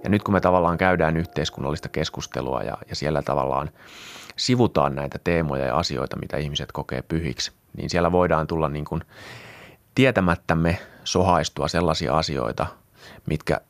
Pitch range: 75-90 Hz